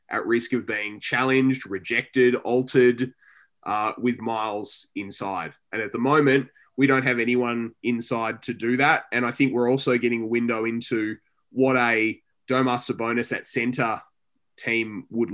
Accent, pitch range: Australian, 115-130 Hz